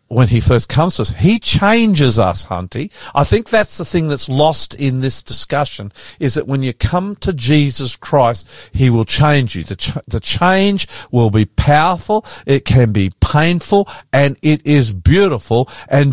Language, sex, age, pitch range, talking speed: English, male, 50-69, 125-165 Hz, 180 wpm